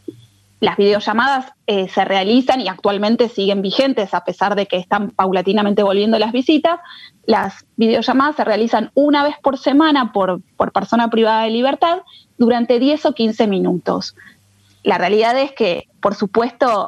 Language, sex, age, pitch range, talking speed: Spanish, female, 20-39, 195-250 Hz, 155 wpm